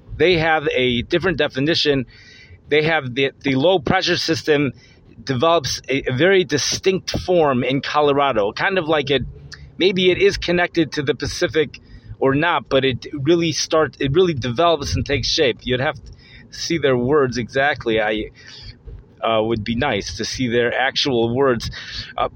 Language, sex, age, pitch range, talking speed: English, male, 30-49, 120-170 Hz, 170 wpm